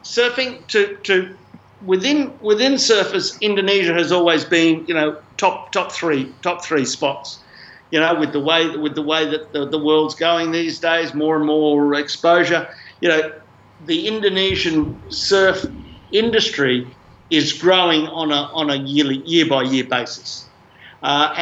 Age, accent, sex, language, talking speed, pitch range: 50-69, Australian, male, English, 155 wpm, 150-180 Hz